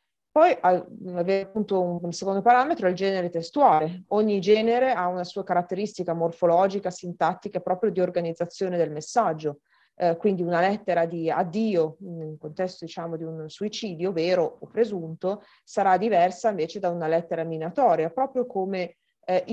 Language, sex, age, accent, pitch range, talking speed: Italian, female, 30-49, native, 170-210 Hz, 145 wpm